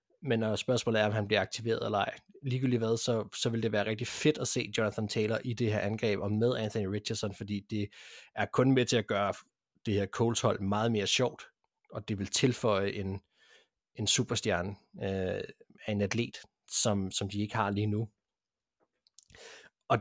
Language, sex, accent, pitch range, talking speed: Danish, male, native, 105-120 Hz, 190 wpm